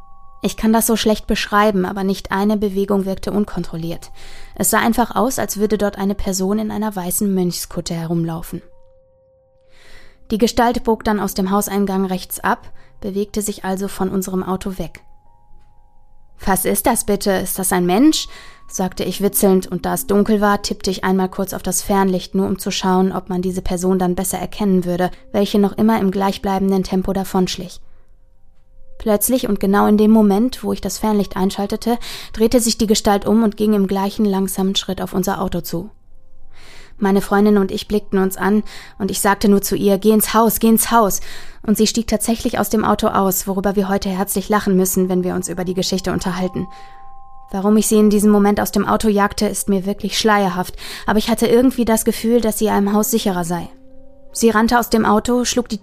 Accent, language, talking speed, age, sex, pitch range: German, German, 195 wpm, 20-39, female, 185-215 Hz